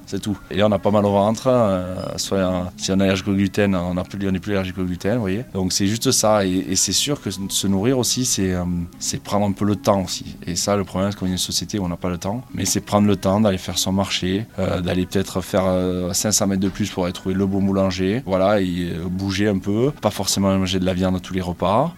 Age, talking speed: 20-39, 275 wpm